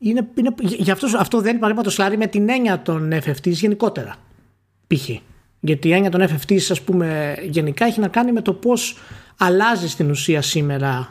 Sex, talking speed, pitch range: male, 185 wpm, 140-200 Hz